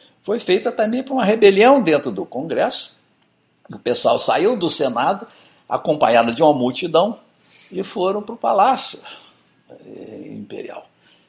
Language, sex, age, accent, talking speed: Portuguese, male, 60-79, Brazilian, 130 wpm